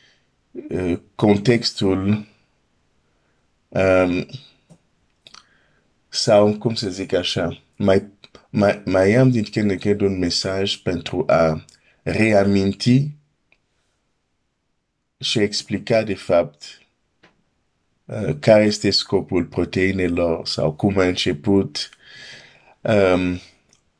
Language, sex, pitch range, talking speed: Romanian, male, 85-105 Hz, 85 wpm